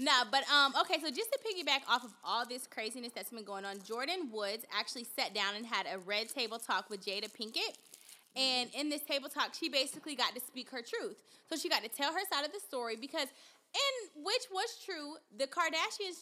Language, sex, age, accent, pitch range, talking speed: English, female, 20-39, American, 230-295 Hz, 220 wpm